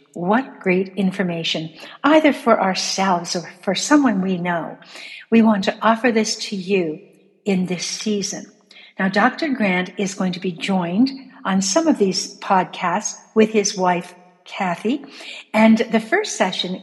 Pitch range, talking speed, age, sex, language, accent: 180-225 Hz, 150 wpm, 60-79, female, English, American